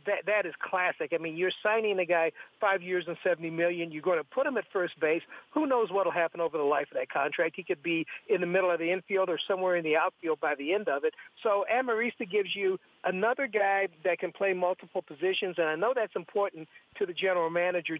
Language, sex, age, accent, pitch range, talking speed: English, male, 60-79, American, 170-225 Hz, 245 wpm